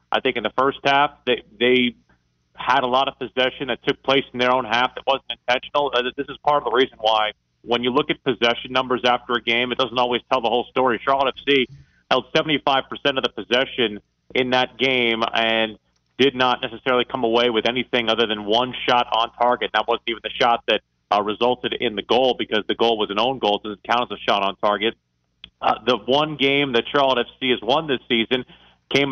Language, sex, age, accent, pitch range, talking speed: English, male, 30-49, American, 115-130 Hz, 225 wpm